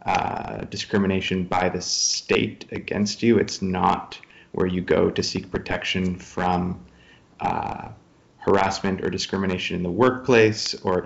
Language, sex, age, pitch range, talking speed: English, male, 20-39, 90-105 Hz, 130 wpm